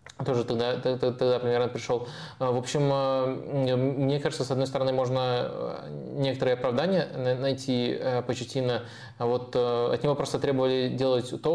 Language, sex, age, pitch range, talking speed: Russian, male, 20-39, 120-135 Hz, 130 wpm